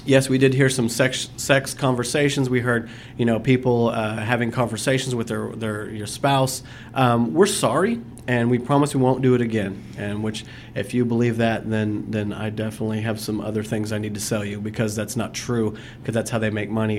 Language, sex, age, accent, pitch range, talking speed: English, male, 40-59, American, 110-125 Hz, 215 wpm